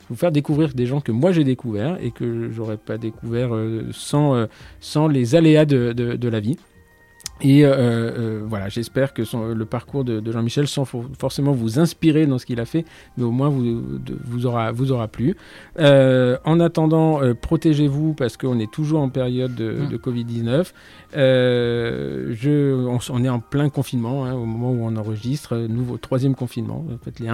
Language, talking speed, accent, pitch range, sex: French, 195 wpm, French, 115-135 Hz, male